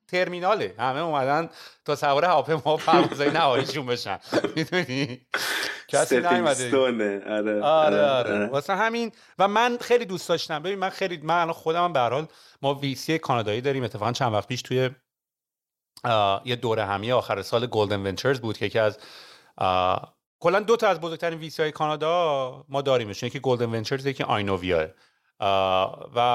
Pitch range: 125-155 Hz